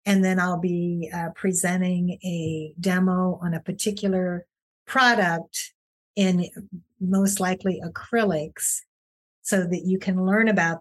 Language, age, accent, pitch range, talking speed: English, 50-69, American, 165-195 Hz, 120 wpm